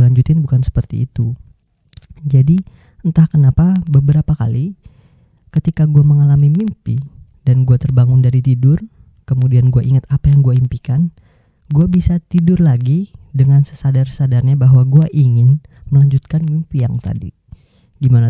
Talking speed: 130 wpm